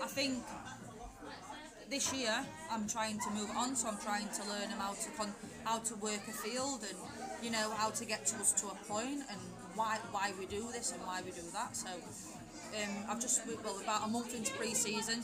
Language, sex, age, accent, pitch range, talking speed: English, female, 30-49, British, 205-235 Hz, 215 wpm